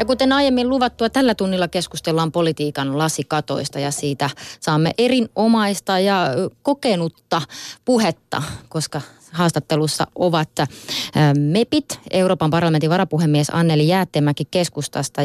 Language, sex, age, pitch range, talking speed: Finnish, female, 30-49, 145-185 Hz, 100 wpm